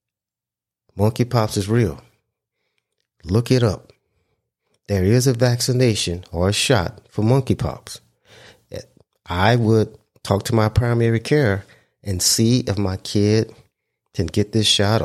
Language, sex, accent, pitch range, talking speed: English, male, American, 100-125 Hz, 130 wpm